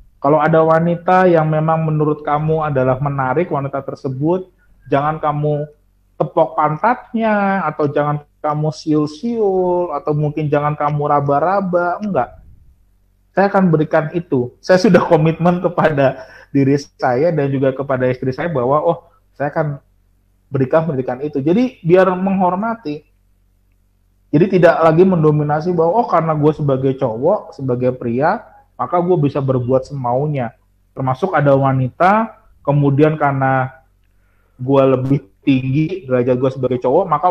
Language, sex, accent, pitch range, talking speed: Indonesian, male, native, 130-165 Hz, 125 wpm